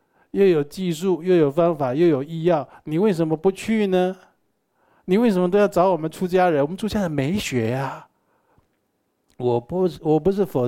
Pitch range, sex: 125-180 Hz, male